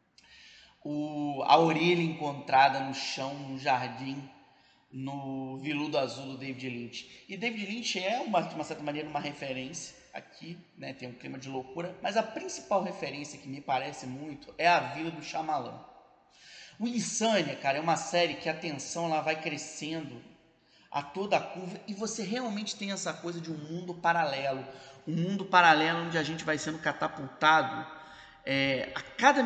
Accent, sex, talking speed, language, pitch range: Brazilian, male, 170 wpm, Portuguese, 140-170 Hz